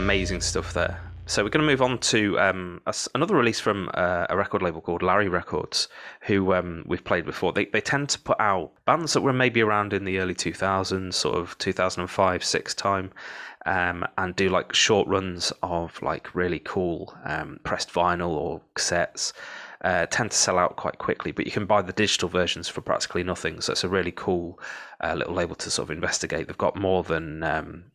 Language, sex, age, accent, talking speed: English, male, 20-39, British, 205 wpm